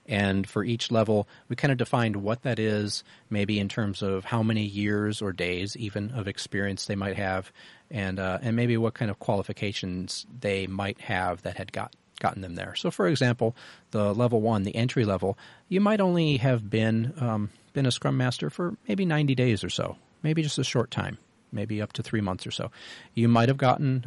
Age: 40-59